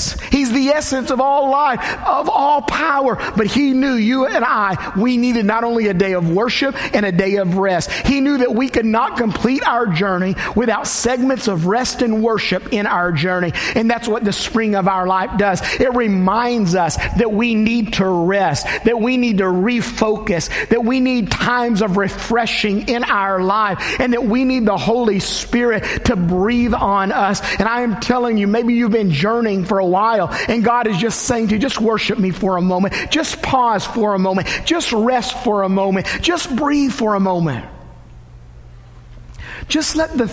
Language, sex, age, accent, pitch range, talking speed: English, male, 50-69, American, 190-245 Hz, 195 wpm